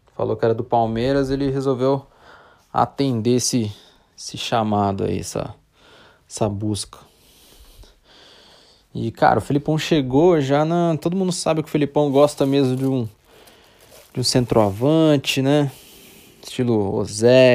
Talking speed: 130 wpm